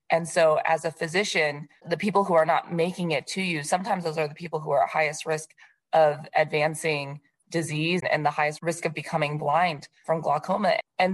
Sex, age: female, 20-39